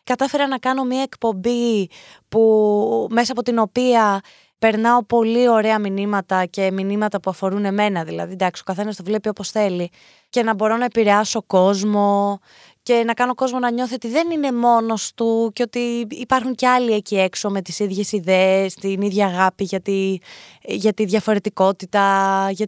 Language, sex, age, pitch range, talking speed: Greek, female, 20-39, 195-255 Hz, 170 wpm